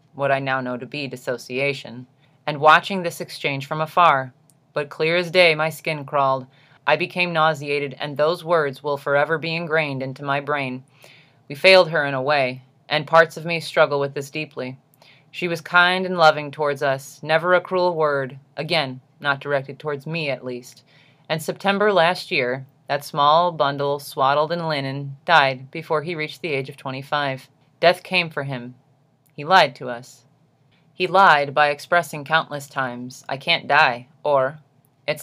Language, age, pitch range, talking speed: English, 30-49, 135-160 Hz, 175 wpm